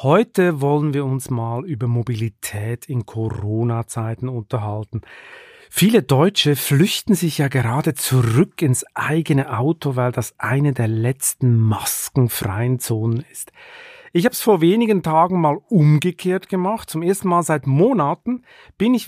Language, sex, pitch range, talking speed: German, male, 130-180 Hz, 140 wpm